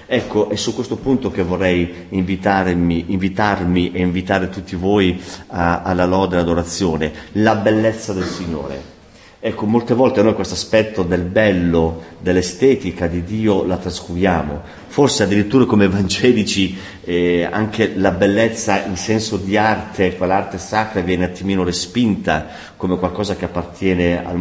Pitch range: 90-110 Hz